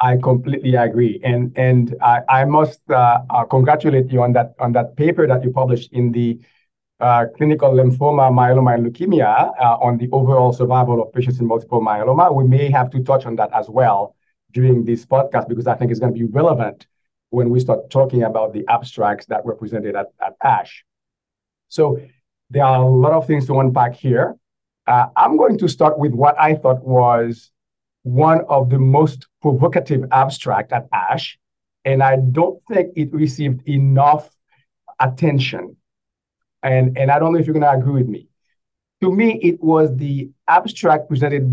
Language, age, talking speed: English, 50-69, 180 wpm